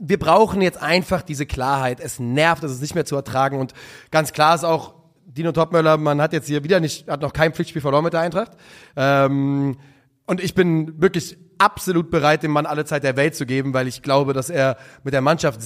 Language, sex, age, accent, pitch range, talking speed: German, male, 30-49, German, 140-175 Hz, 220 wpm